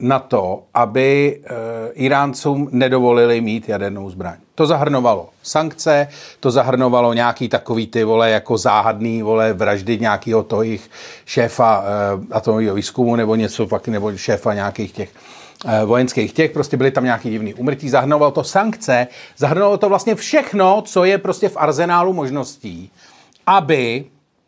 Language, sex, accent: Czech, male, native